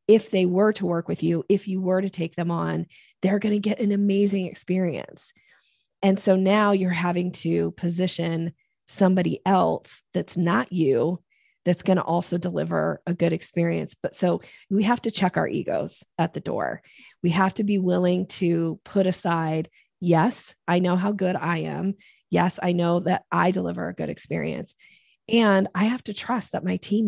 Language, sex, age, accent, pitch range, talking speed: English, female, 20-39, American, 170-200 Hz, 185 wpm